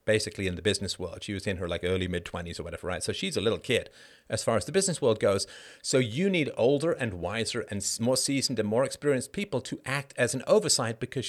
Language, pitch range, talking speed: English, 105-135 Hz, 245 wpm